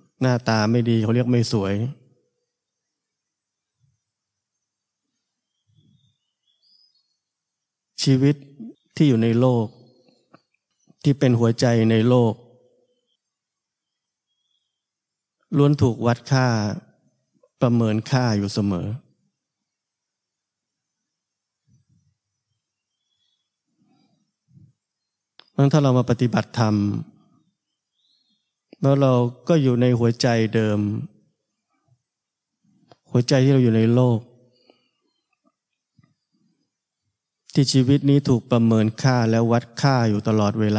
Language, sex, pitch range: Thai, male, 110-130 Hz